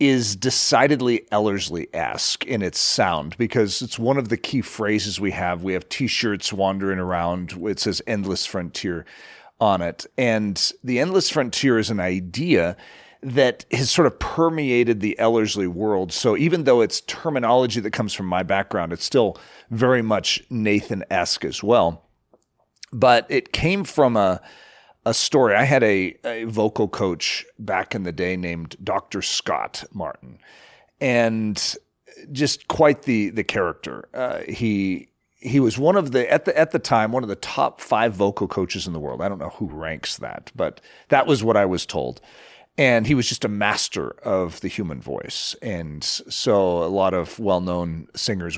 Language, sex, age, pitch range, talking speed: English, male, 40-59, 90-120 Hz, 170 wpm